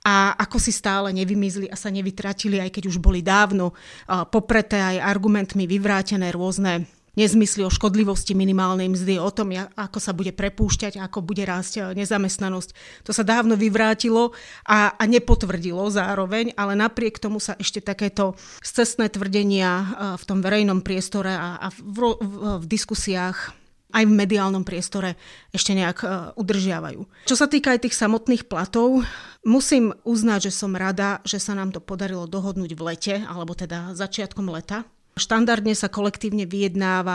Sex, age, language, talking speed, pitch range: female, 30-49, Slovak, 145 wpm, 190-210 Hz